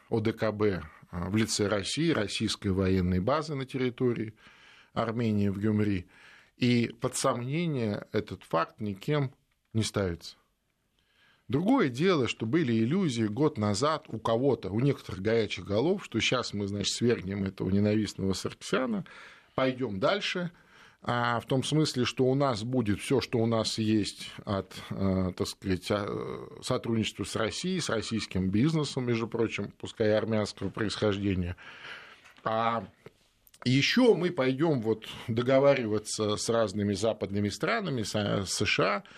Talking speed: 125 wpm